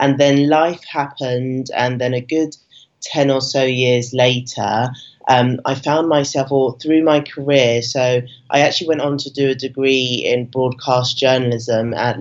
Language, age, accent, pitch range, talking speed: English, 20-39, British, 120-135 Hz, 165 wpm